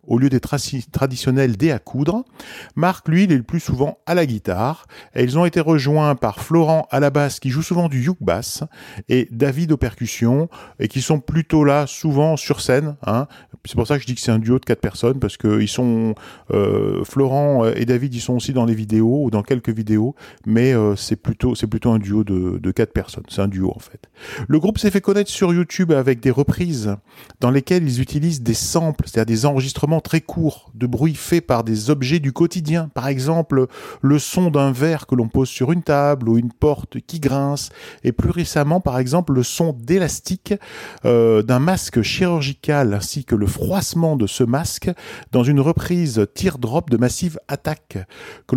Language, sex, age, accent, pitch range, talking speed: French, male, 40-59, French, 120-160 Hz, 210 wpm